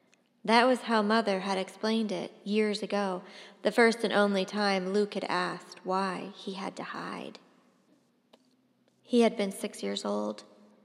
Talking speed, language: 155 wpm, English